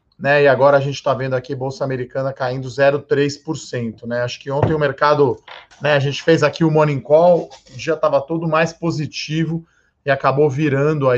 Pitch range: 120-140 Hz